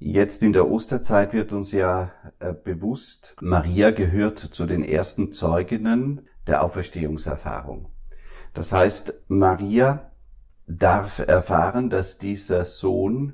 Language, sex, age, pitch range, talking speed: German, male, 50-69, 75-100 Hz, 110 wpm